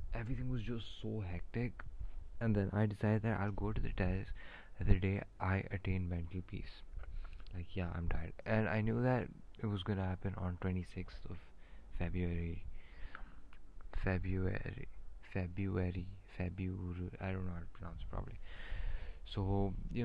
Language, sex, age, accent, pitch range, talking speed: English, male, 20-39, Indian, 90-105 Hz, 150 wpm